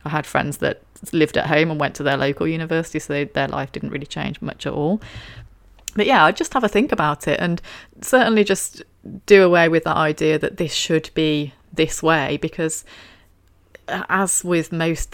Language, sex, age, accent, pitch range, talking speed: English, female, 30-49, British, 145-170 Hz, 200 wpm